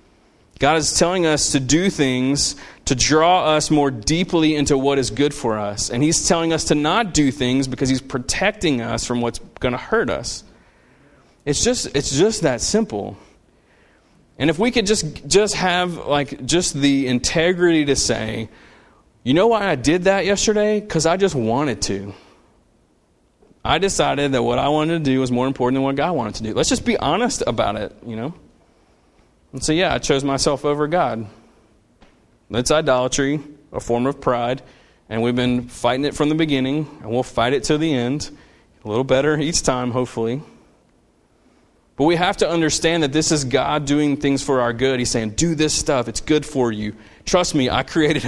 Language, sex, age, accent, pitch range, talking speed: English, male, 30-49, American, 120-160 Hz, 190 wpm